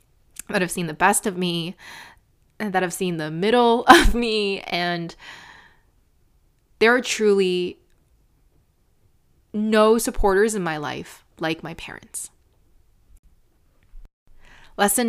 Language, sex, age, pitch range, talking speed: English, female, 20-39, 175-235 Hz, 105 wpm